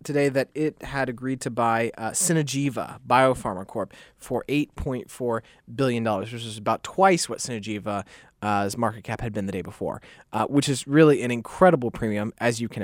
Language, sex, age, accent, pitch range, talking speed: English, male, 20-39, American, 115-145 Hz, 175 wpm